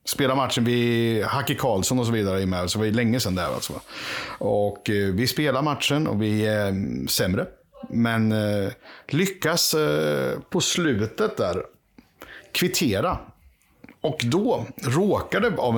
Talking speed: 130 wpm